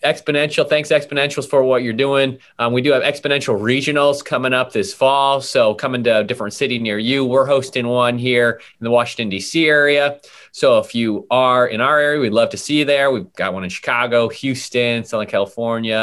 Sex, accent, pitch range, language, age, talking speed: male, American, 110-135 Hz, English, 30-49, 205 wpm